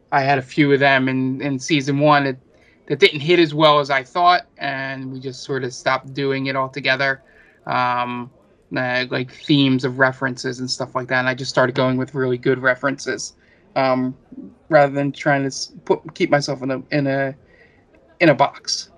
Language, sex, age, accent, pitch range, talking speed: English, male, 20-39, American, 130-155 Hz, 200 wpm